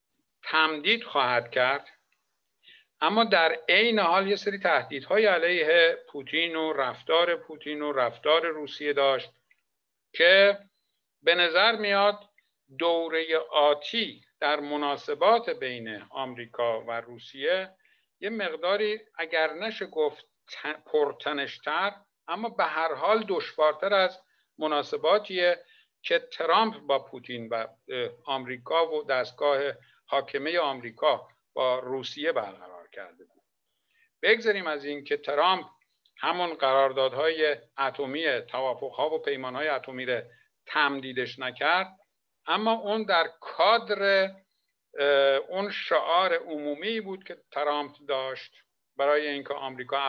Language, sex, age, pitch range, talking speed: Persian, male, 60-79, 140-205 Hz, 105 wpm